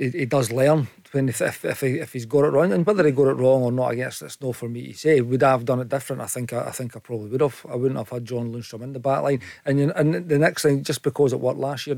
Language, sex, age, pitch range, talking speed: English, male, 40-59, 125-140 Hz, 310 wpm